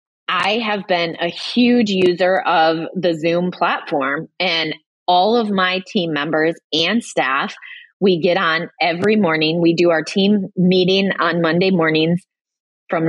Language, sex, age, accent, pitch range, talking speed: English, female, 30-49, American, 165-210 Hz, 145 wpm